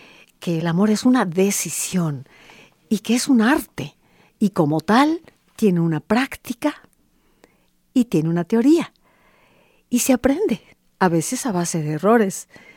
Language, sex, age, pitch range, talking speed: Spanish, female, 50-69, 165-230 Hz, 140 wpm